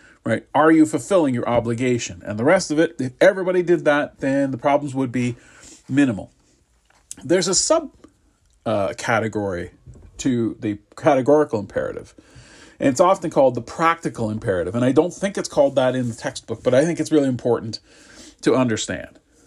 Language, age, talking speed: English, 40-59, 165 wpm